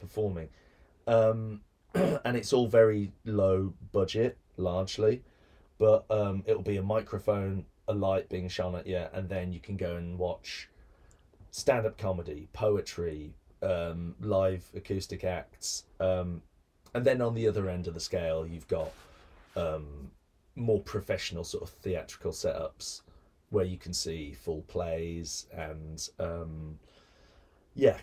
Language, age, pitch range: English, 30-49, 80-105 Hz